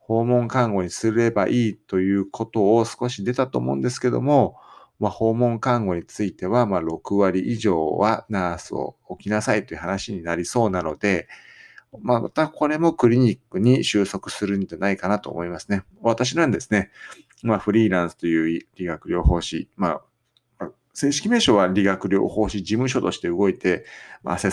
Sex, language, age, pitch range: male, Japanese, 50-69, 90-120 Hz